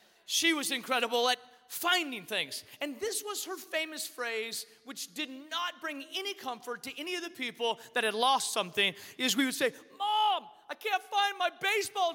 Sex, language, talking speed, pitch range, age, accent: male, English, 185 wpm, 255-385 Hz, 30-49, American